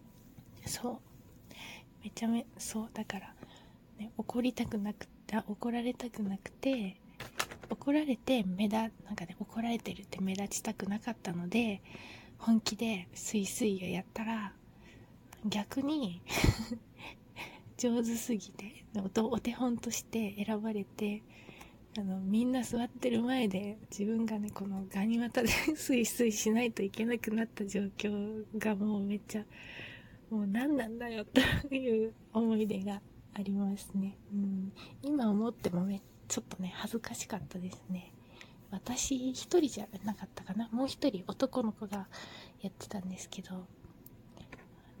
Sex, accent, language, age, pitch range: female, native, Japanese, 20-39, 195-230 Hz